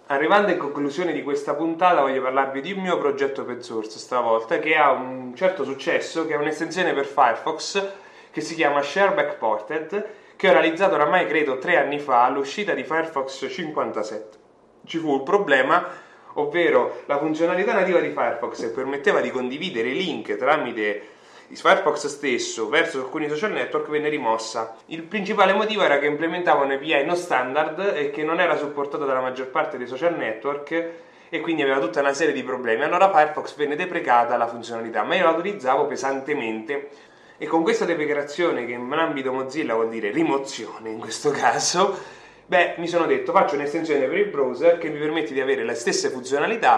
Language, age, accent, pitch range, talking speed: English, 20-39, Italian, 135-190 Hz, 175 wpm